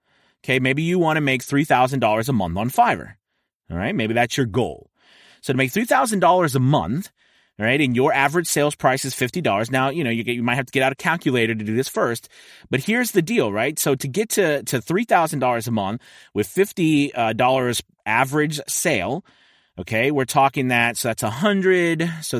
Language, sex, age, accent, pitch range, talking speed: English, male, 30-49, American, 125-160 Hz, 225 wpm